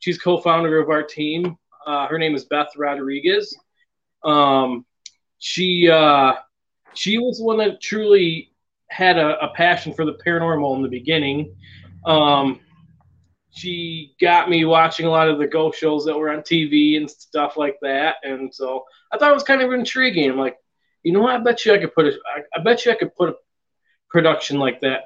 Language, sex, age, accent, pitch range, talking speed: English, male, 20-39, American, 135-170 Hz, 190 wpm